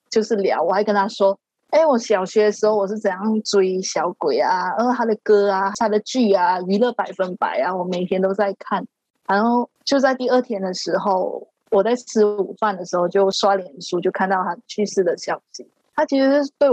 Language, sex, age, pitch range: Chinese, female, 20-39, 195-250 Hz